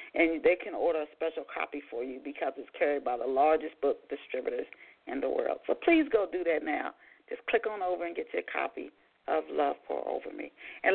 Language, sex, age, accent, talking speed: English, female, 40-59, American, 220 wpm